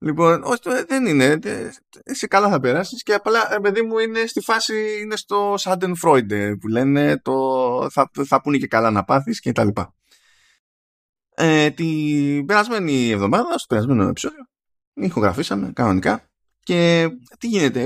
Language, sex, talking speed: Greek, male, 170 wpm